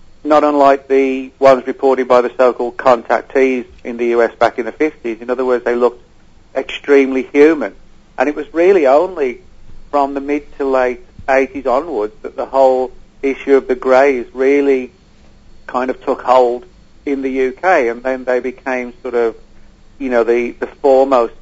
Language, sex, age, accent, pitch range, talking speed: English, male, 50-69, British, 115-135 Hz, 170 wpm